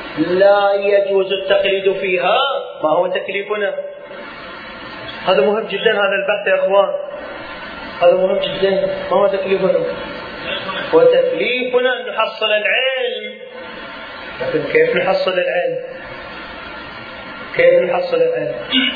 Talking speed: 100 wpm